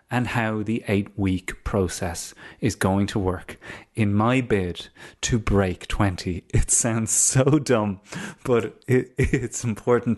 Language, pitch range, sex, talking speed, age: English, 95-125 Hz, male, 135 wpm, 30-49